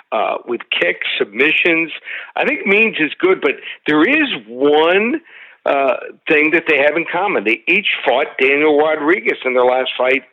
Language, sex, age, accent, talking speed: English, male, 60-79, American, 170 wpm